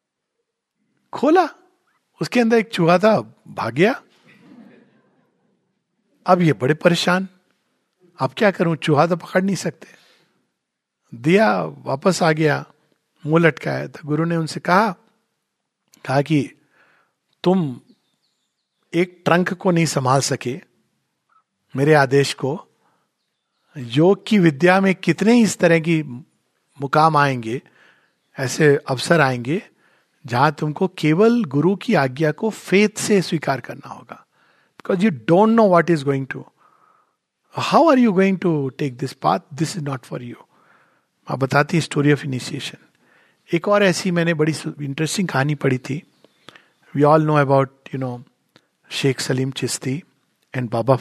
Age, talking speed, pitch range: 50-69, 135 wpm, 140-190 Hz